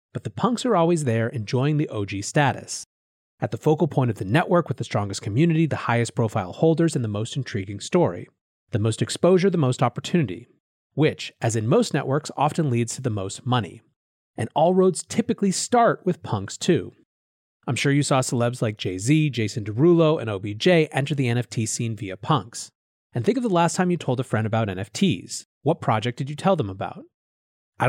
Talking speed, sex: 200 wpm, male